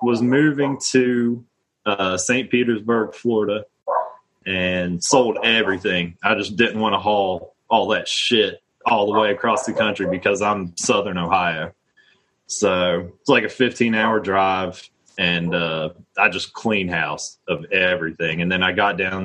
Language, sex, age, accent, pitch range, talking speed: English, male, 20-39, American, 95-125 Hz, 150 wpm